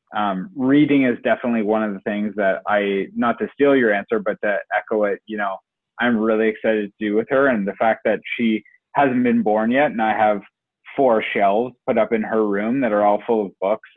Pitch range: 100-115 Hz